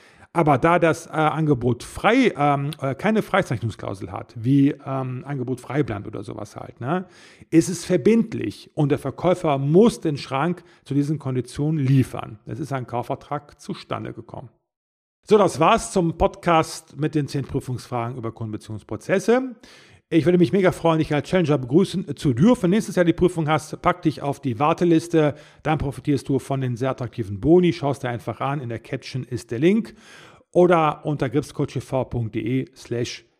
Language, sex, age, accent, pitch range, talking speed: German, male, 40-59, German, 125-165 Hz, 170 wpm